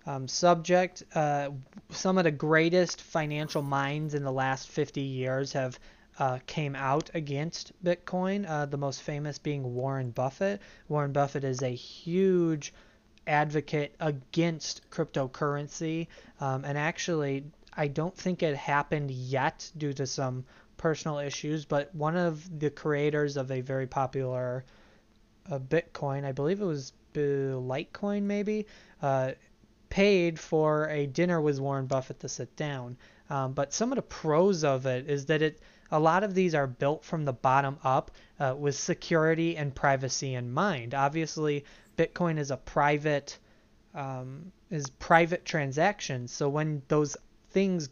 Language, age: English, 20-39